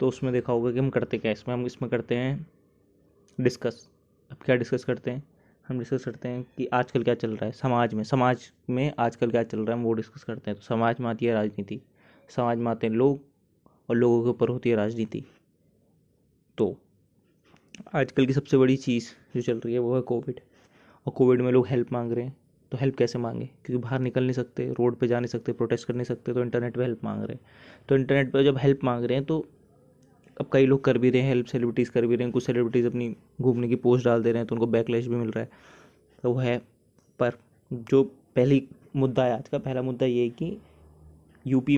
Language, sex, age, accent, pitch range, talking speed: Hindi, male, 20-39, native, 120-130 Hz, 235 wpm